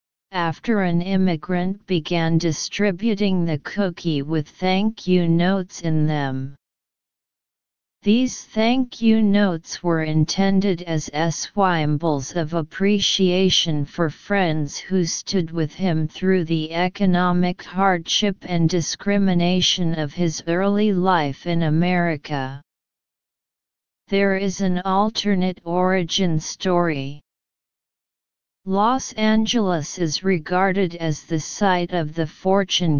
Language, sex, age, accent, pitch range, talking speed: English, female, 40-59, American, 160-195 Hz, 100 wpm